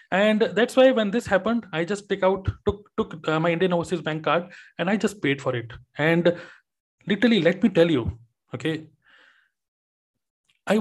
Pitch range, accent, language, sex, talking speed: 160-215 Hz, native, Hindi, male, 180 wpm